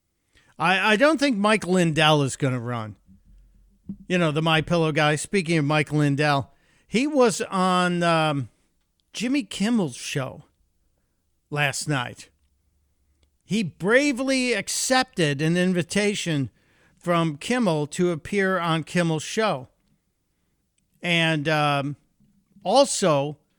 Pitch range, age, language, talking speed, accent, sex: 140-185 Hz, 50-69, English, 110 wpm, American, male